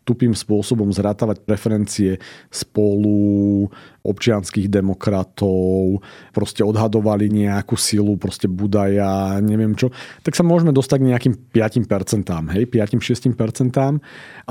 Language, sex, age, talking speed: Slovak, male, 40-59, 100 wpm